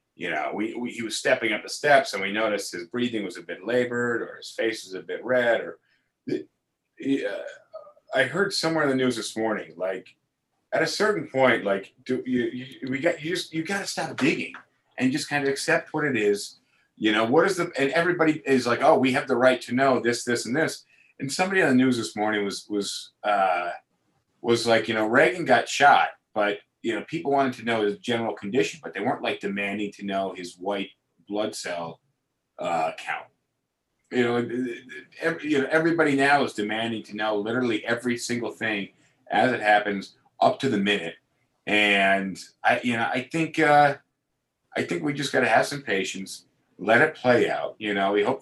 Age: 30-49